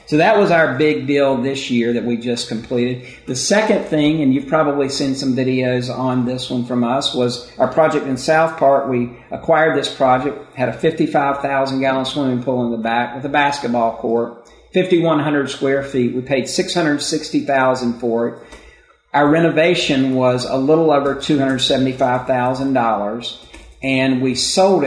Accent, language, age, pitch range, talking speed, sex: American, English, 50-69, 125-155 Hz, 160 wpm, male